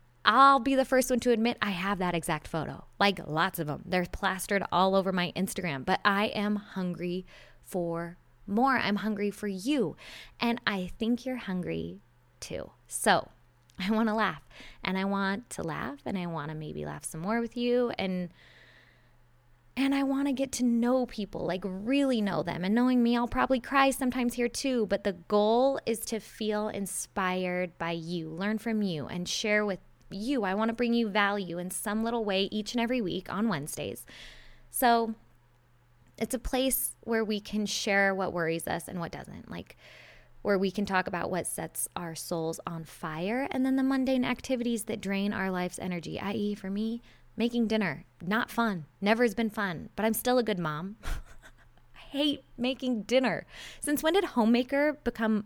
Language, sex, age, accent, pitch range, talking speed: English, female, 20-39, American, 180-235 Hz, 190 wpm